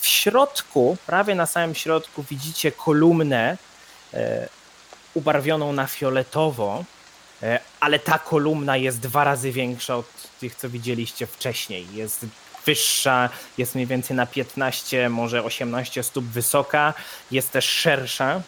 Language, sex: Polish, male